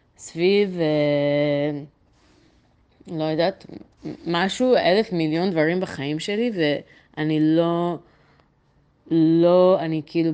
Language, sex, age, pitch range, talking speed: Hebrew, female, 20-39, 150-195 Hz, 85 wpm